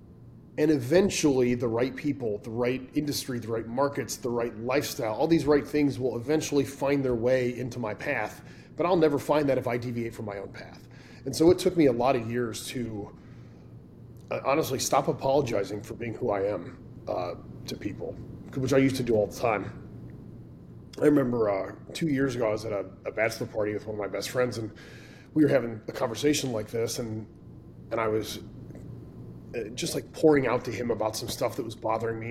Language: English